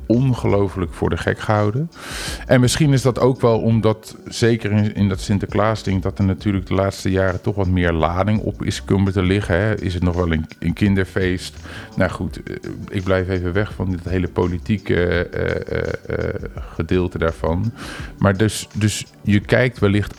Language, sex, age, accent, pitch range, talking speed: Dutch, male, 40-59, Dutch, 90-115 Hz, 180 wpm